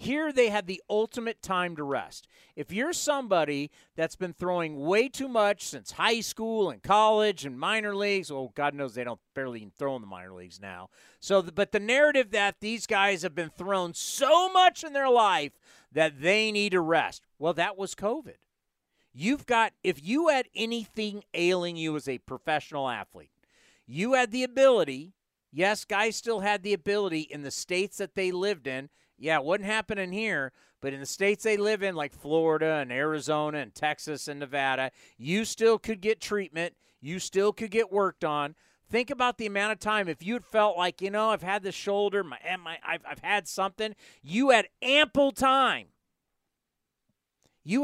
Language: English